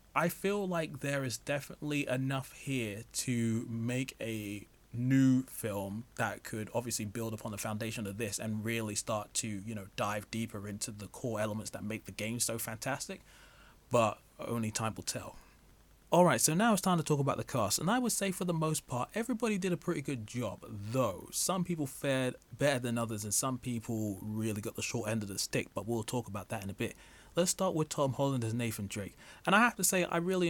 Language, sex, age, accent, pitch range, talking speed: English, male, 20-39, British, 110-145 Hz, 215 wpm